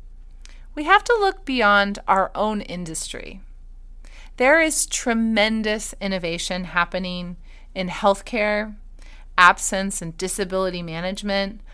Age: 30-49